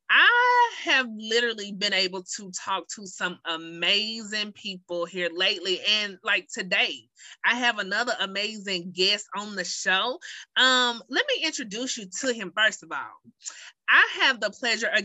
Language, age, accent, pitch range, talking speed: English, 20-39, American, 185-255 Hz, 155 wpm